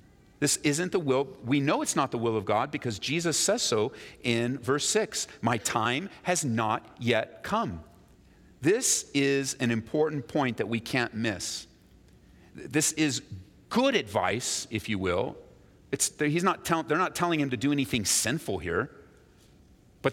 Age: 40-59